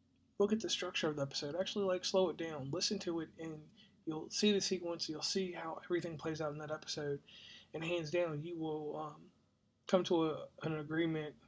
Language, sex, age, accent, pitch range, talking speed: English, male, 20-39, American, 150-165 Hz, 210 wpm